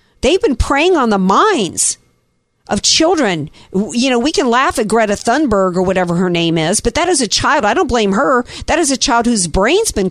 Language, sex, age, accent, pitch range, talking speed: English, female, 50-69, American, 190-290 Hz, 220 wpm